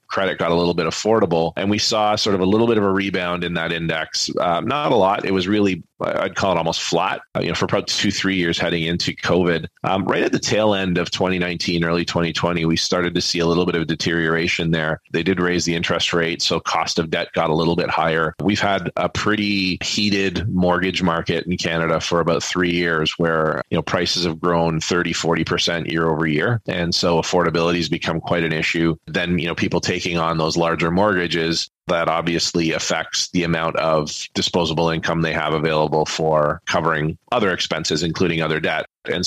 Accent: American